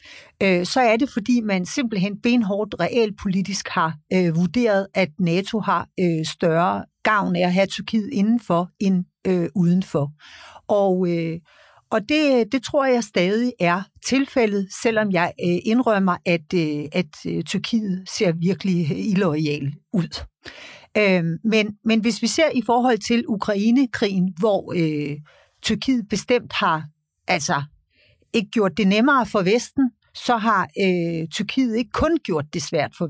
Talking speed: 150 wpm